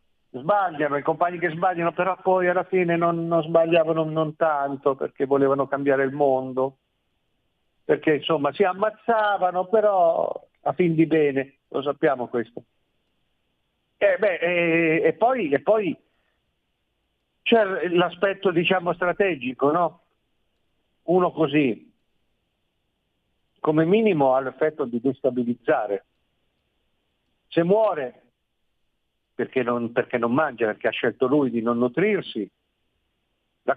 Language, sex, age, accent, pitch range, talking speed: Italian, male, 50-69, native, 125-175 Hz, 115 wpm